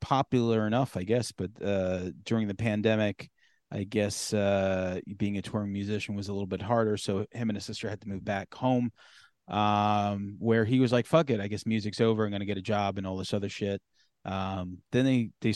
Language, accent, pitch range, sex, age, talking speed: English, American, 100-115 Hz, male, 30-49, 220 wpm